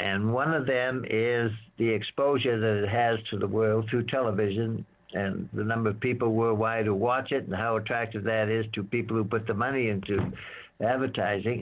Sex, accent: male, American